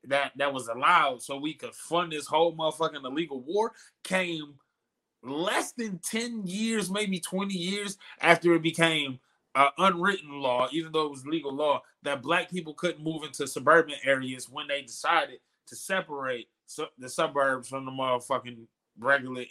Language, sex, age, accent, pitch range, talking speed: English, male, 20-39, American, 140-180 Hz, 165 wpm